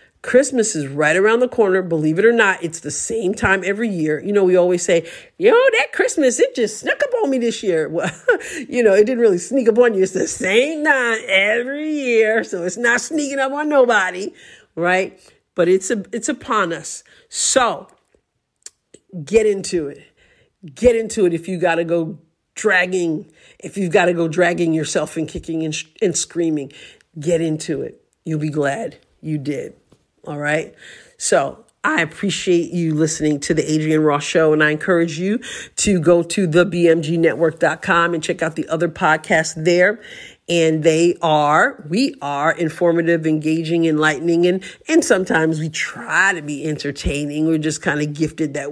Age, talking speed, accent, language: 50-69, 180 wpm, American, English